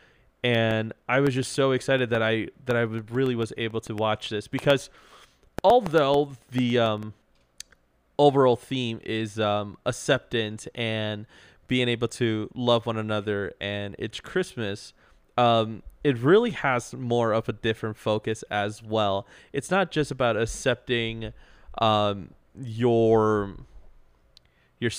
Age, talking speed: 20-39, 130 wpm